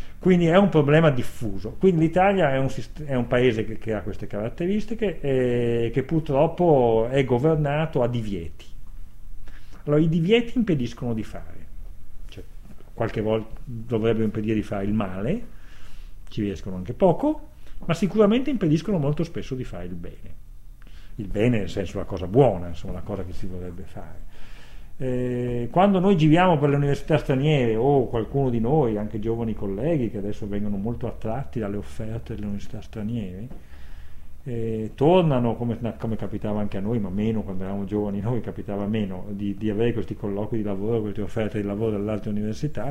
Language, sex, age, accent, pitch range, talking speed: Italian, male, 40-59, native, 100-140 Hz, 170 wpm